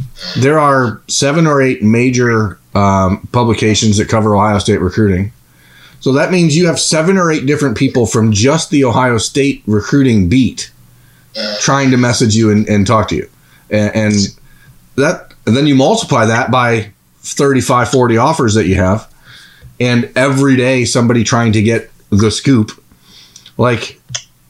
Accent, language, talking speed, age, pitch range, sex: American, English, 155 wpm, 30-49, 105-130 Hz, male